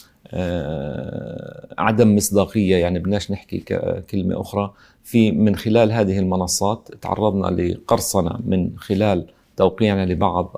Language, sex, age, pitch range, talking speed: English, male, 40-59, 95-110 Hz, 100 wpm